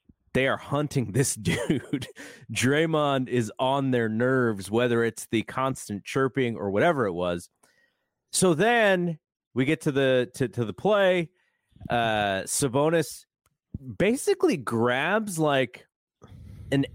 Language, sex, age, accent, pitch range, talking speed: English, male, 30-49, American, 105-150 Hz, 125 wpm